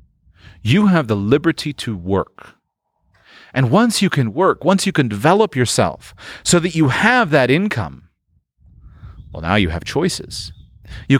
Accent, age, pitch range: American, 30-49, 95-140 Hz